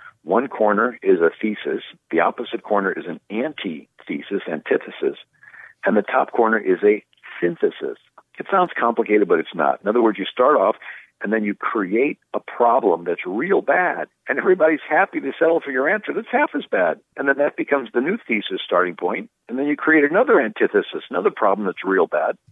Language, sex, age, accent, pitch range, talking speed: English, male, 50-69, American, 110-155 Hz, 190 wpm